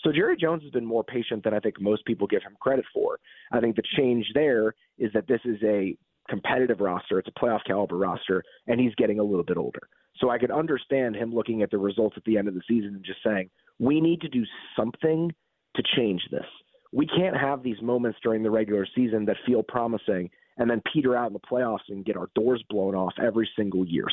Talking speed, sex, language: 235 wpm, male, English